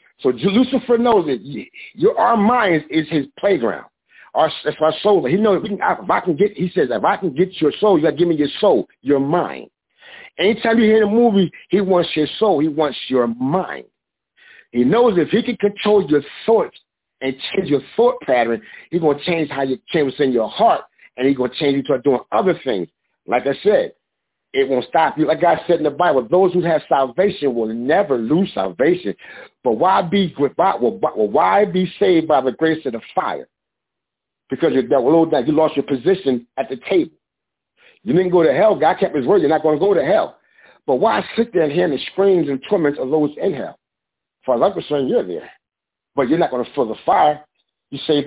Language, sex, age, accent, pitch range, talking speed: English, male, 50-69, American, 140-200 Hz, 215 wpm